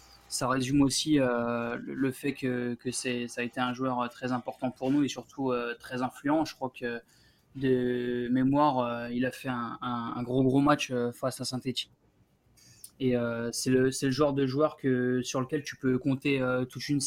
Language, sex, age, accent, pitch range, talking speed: French, male, 20-39, French, 125-135 Hz, 205 wpm